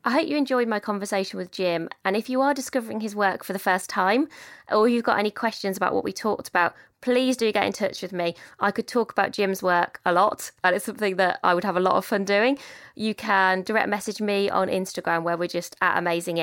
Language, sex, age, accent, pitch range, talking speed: English, female, 20-39, British, 180-220 Hz, 250 wpm